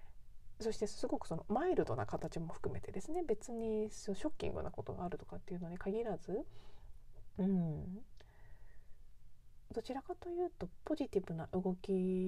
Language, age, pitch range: Japanese, 40-59, 160-210 Hz